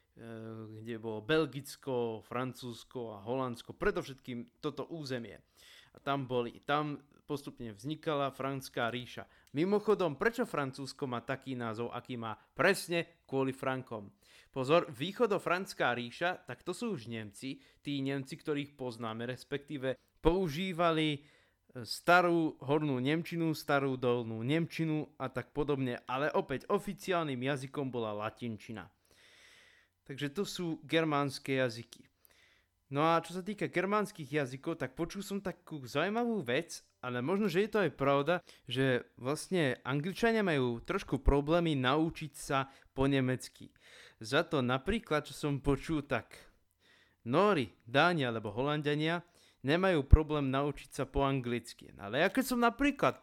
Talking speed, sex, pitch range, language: 130 wpm, male, 125-170 Hz, Slovak